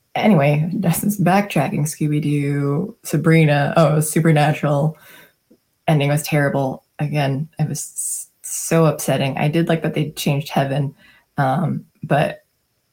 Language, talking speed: English, 115 wpm